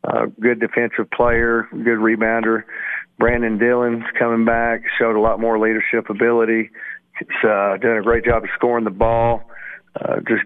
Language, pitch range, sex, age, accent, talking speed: English, 110-120 Hz, male, 40-59, American, 160 wpm